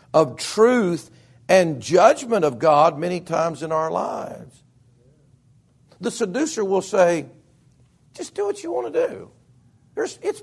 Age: 50-69